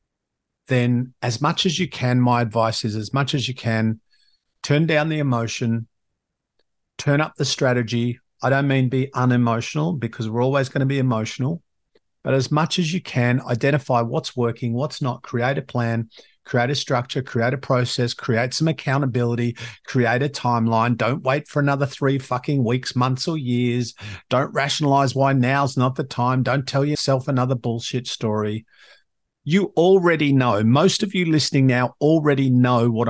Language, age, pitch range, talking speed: English, 50-69, 120-140 Hz, 170 wpm